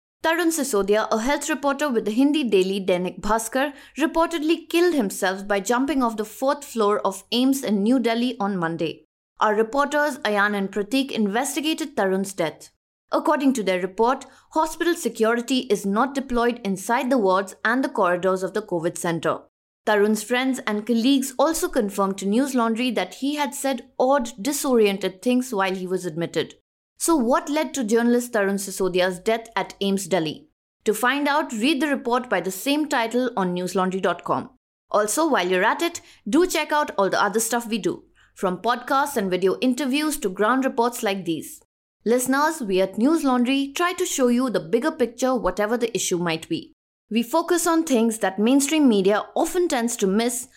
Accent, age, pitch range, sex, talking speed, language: Indian, 20-39, 195-280 Hz, female, 175 wpm, English